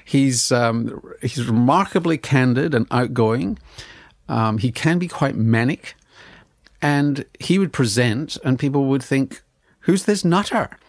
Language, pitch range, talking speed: English, 115-150 Hz, 130 wpm